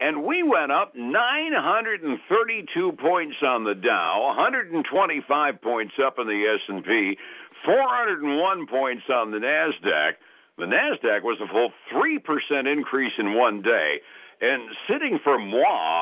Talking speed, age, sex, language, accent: 125 wpm, 60-79, male, English, American